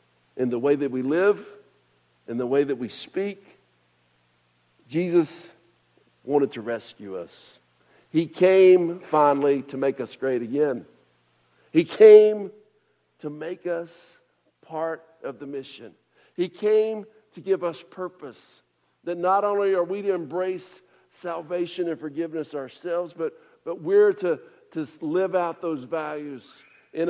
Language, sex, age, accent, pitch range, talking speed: English, male, 60-79, American, 140-180 Hz, 135 wpm